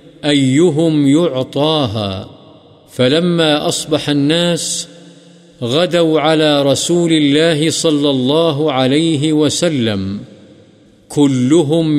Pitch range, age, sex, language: 140-160 Hz, 50-69, male, Urdu